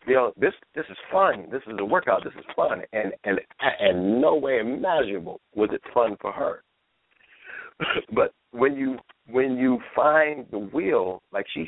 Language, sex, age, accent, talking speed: English, male, 50-69, American, 175 wpm